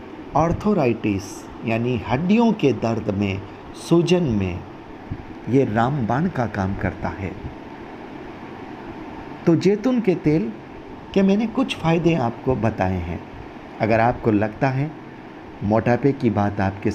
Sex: male